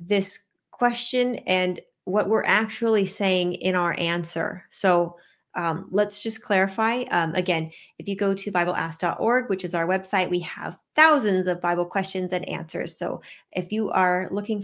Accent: American